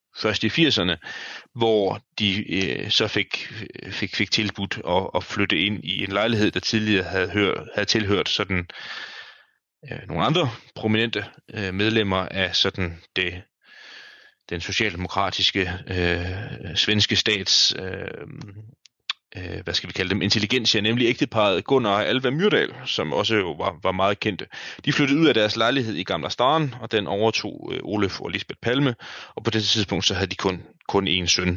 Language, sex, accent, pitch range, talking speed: Danish, male, native, 95-110 Hz, 165 wpm